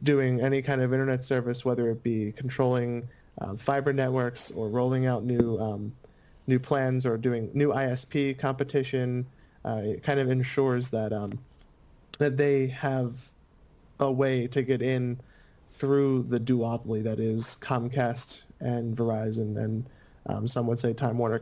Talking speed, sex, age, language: 155 wpm, male, 30-49, English